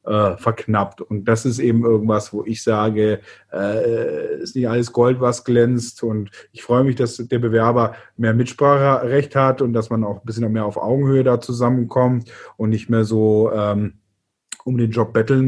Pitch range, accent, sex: 115-150 Hz, German, male